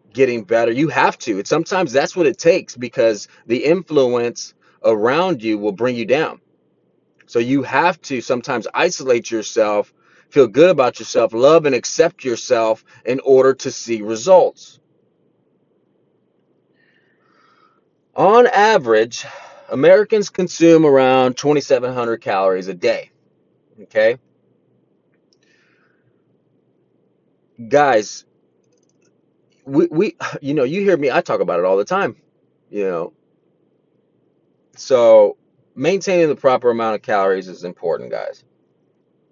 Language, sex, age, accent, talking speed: English, male, 30-49, American, 120 wpm